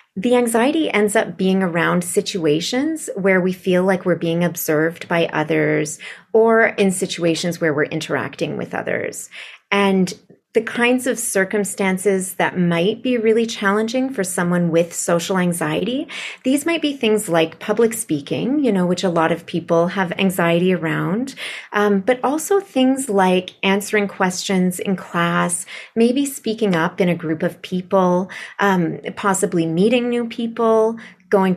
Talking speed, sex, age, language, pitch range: 150 wpm, female, 30-49, English, 170-220 Hz